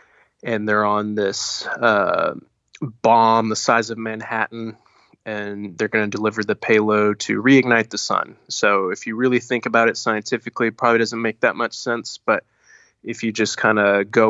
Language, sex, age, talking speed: English, male, 20-39, 180 wpm